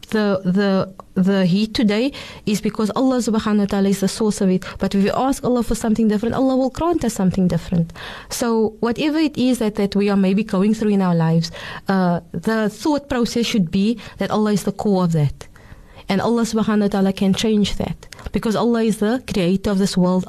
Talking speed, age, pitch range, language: 205 wpm, 30-49, 190-225 Hz, English